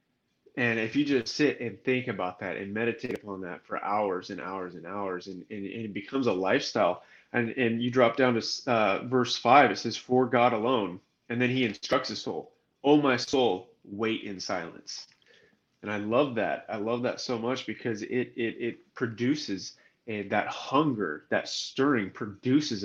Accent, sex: American, male